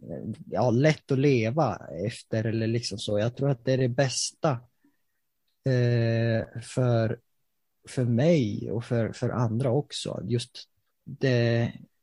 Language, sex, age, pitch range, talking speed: Swedish, male, 30-49, 115-140 Hz, 130 wpm